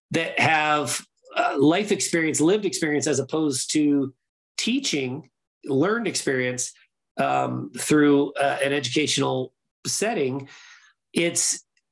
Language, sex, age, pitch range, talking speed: English, male, 40-59, 140-175 Hz, 100 wpm